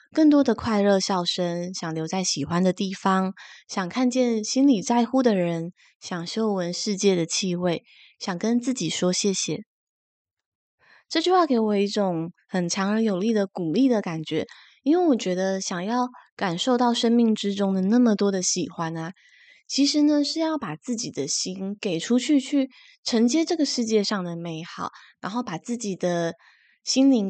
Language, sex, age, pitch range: Chinese, female, 20-39, 180-245 Hz